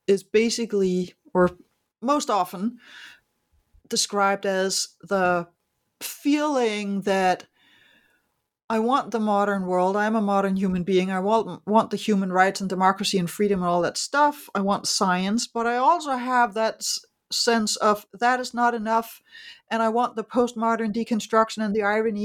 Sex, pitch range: female, 200-245 Hz